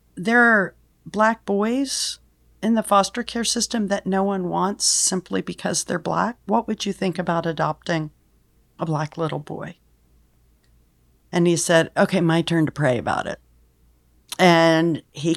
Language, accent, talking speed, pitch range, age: English, American, 150 wpm, 150-190 Hz, 40-59